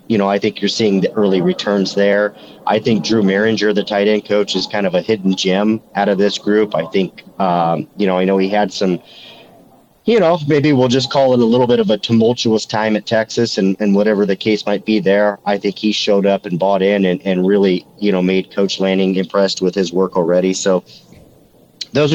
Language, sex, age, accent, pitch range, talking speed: English, male, 40-59, American, 95-110 Hz, 230 wpm